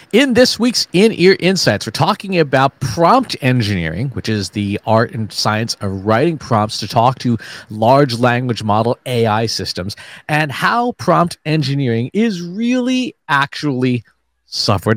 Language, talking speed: English, 140 wpm